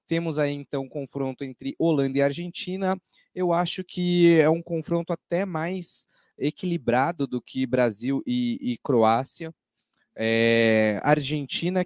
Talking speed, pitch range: 130 wpm, 135-170 Hz